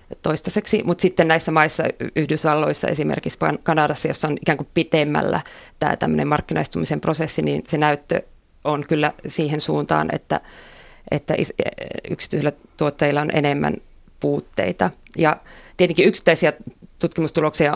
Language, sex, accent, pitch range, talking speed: Finnish, female, native, 150-170 Hz, 115 wpm